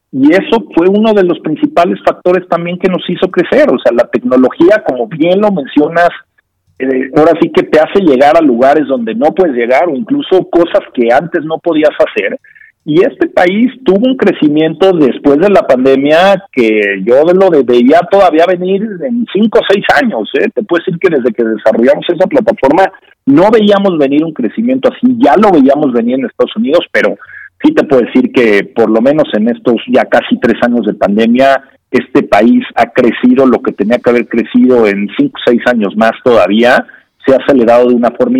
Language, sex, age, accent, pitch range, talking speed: Spanish, male, 50-69, Mexican, 140-200 Hz, 195 wpm